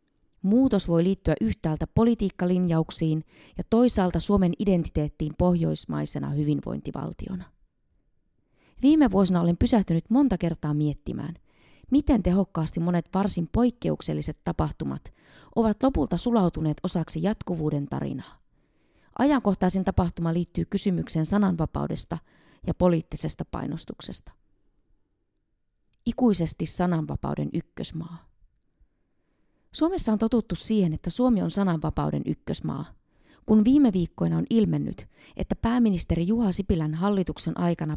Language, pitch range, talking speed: Finnish, 150-200 Hz, 95 wpm